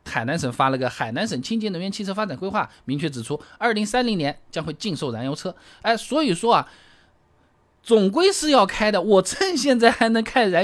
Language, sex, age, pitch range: Chinese, male, 20-39, 135-230 Hz